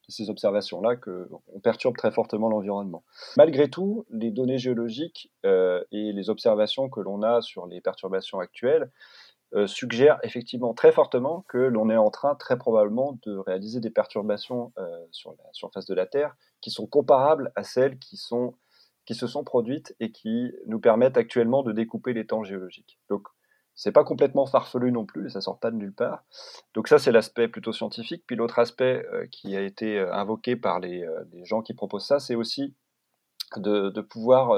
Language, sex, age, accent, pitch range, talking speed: French, male, 30-49, French, 105-135 Hz, 185 wpm